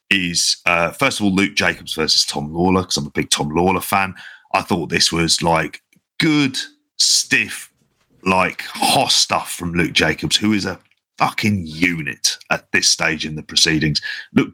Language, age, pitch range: English, 40-59, 80-105 Hz